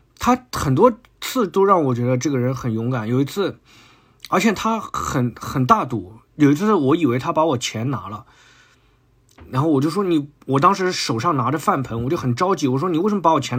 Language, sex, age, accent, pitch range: Chinese, male, 20-39, native, 120-150 Hz